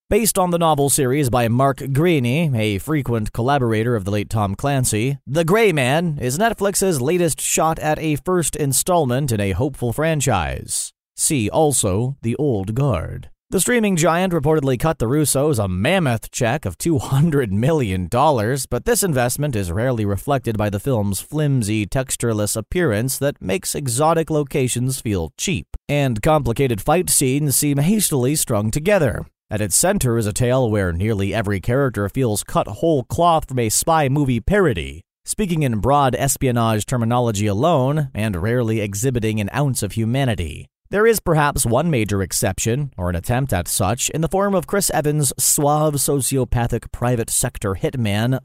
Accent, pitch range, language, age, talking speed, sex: American, 110-155 Hz, English, 30-49, 160 wpm, male